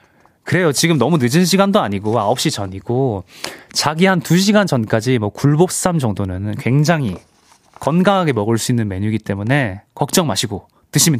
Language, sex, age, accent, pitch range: Korean, male, 20-39, native, 110-175 Hz